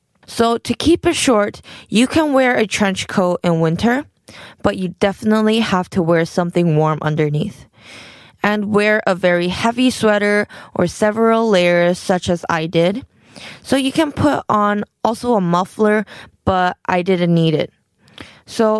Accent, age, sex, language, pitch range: American, 20-39, female, Korean, 180-225 Hz